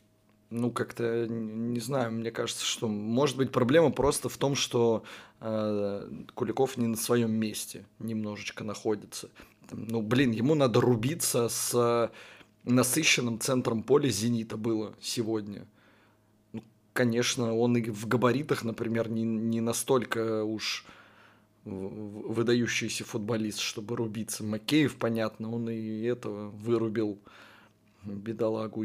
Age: 20-39